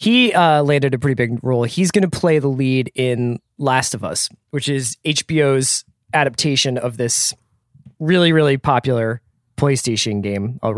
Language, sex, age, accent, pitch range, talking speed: English, male, 20-39, American, 120-155 Hz, 160 wpm